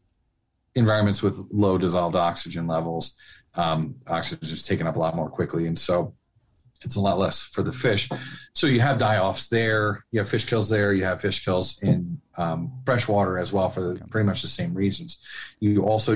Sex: male